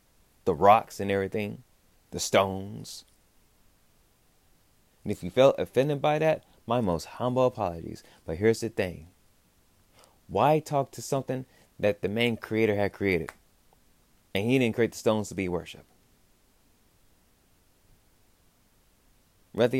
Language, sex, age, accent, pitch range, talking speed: English, male, 30-49, American, 90-120 Hz, 125 wpm